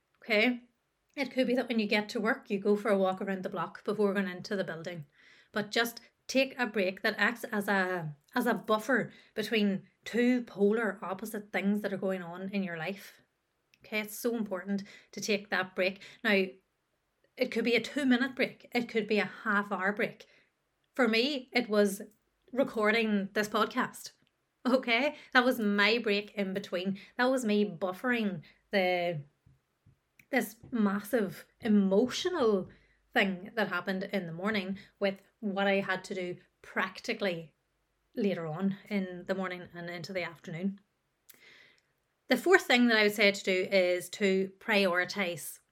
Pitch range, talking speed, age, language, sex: 190-230 Hz, 165 wpm, 30-49, English, female